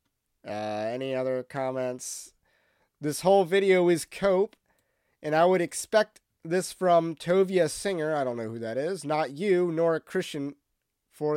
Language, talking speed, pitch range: English, 155 wpm, 130-185 Hz